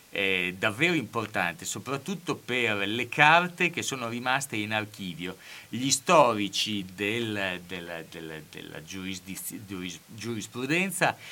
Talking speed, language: 85 wpm, Italian